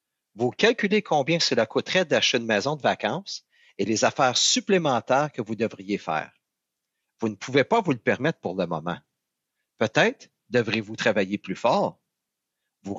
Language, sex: English, male